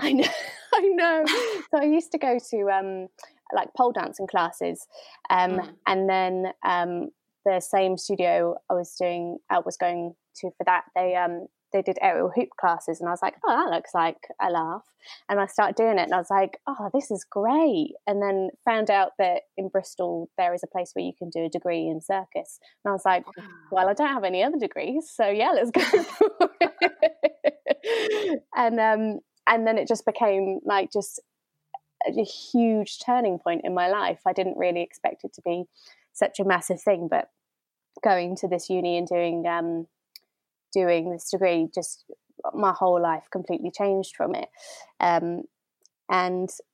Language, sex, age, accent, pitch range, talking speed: English, female, 20-39, British, 180-240 Hz, 185 wpm